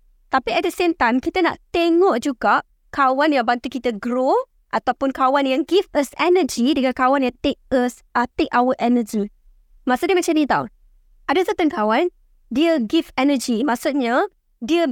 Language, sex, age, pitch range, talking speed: Malay, female, 20-39, 250-325 Hz, 160 wpm